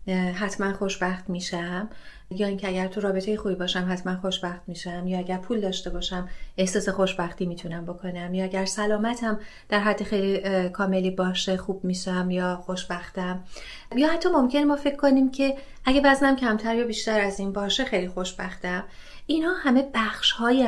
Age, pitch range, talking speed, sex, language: 30-49, 185-225 Hz, 160 wpm, female, Persian